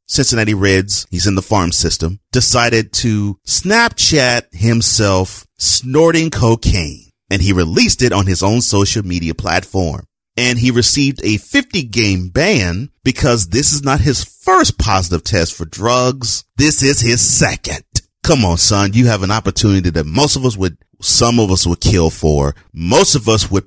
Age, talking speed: 30-49, 165 wpm